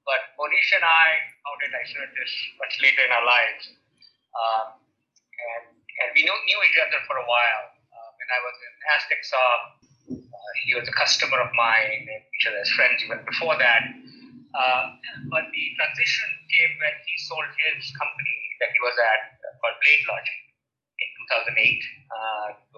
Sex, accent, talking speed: male, Indian, 170 wpm